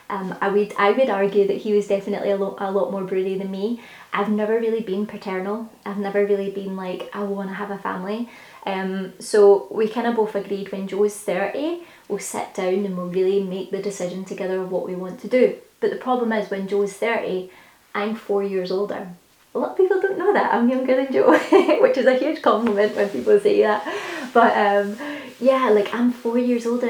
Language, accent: English, British